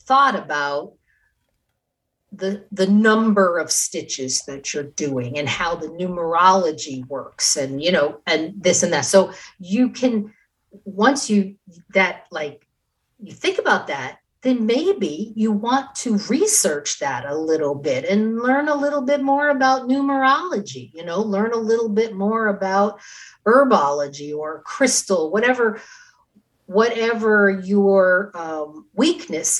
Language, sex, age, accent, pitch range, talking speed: English, female, 50-69, American, 160-225 Hz, 135 wpm